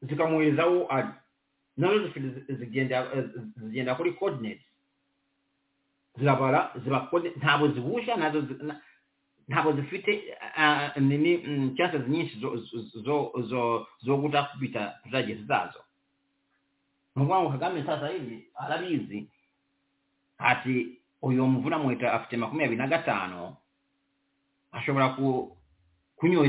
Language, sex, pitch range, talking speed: English, male, 125-150 Hz, 50 wpm